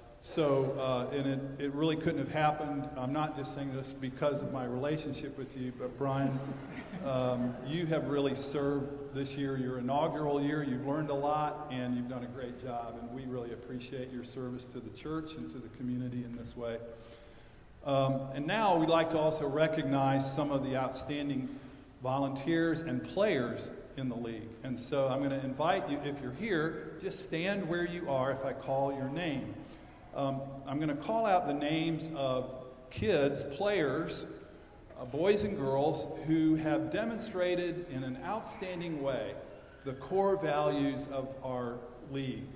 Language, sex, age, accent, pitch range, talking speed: English, male, 50-69, American, 130-155 Hz, 175 wpm